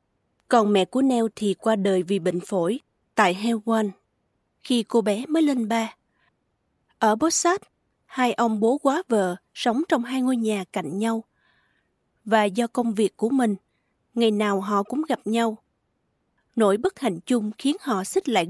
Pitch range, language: 210-260 Hz, Vietnamese